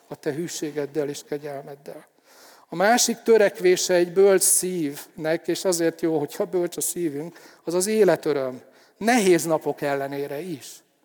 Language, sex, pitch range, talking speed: Hungarian, male, 155-190 Hz, 135 wpm